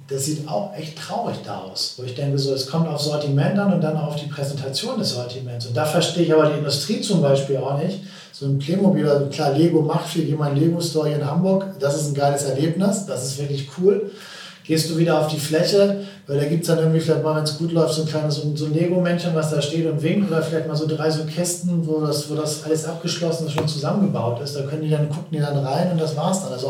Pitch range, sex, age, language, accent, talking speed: 140-165 Hz, male, 40-59, German, German, 255 wpm